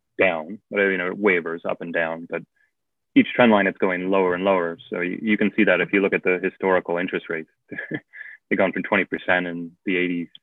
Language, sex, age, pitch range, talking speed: English, male, 20-39, 85-95 Hz, 220 wpm